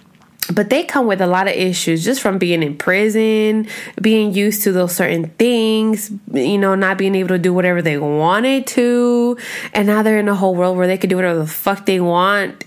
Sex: female